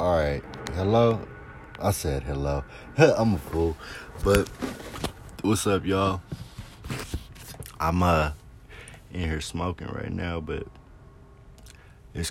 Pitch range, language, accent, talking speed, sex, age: 80-105 Hz, English, American, 105 wpm, male, 20-39